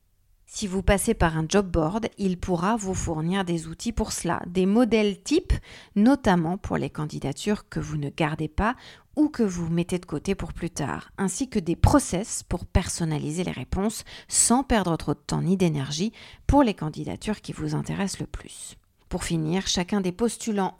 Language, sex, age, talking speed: French, female, 40-59, 185 wpm